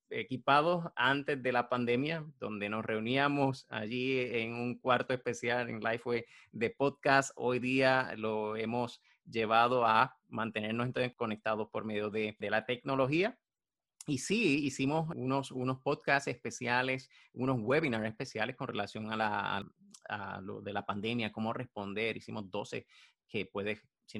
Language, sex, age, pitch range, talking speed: Spanish, male, 30-49, 110-135 Hz, 140 wpm